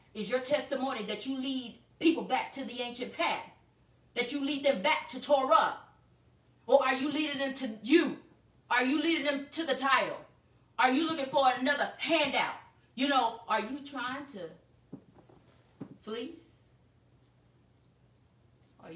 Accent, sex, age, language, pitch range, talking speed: American, female, 30-49, English, 185-265 Hz, 150 wpm